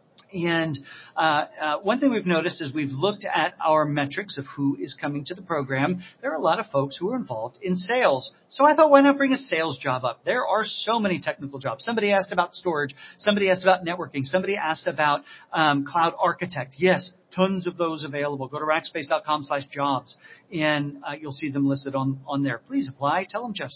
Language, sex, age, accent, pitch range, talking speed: English, male, 40-59, American, 140-185 Hz, 215 wpm